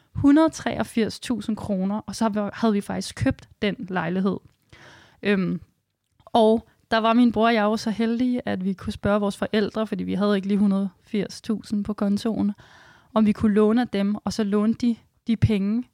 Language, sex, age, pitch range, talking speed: Danish, female, 20-39, 195-230 Hz, 165 wpm